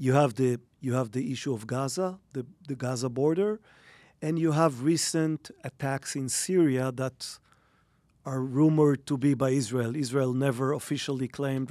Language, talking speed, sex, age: English, 150 wpm, male, 40-59